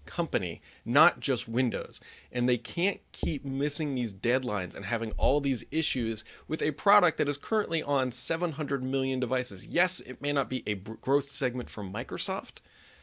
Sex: male